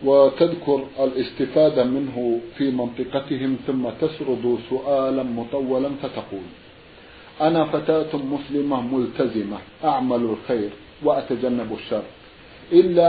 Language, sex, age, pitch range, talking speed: Arabic, male, 50-69, 130-160 Hz, 85 wpm